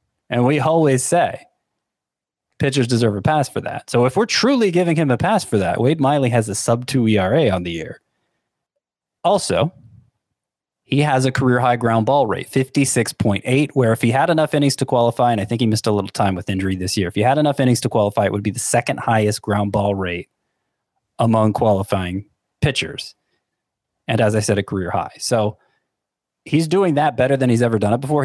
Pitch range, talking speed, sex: 105-135 Hz, 200 wpm, male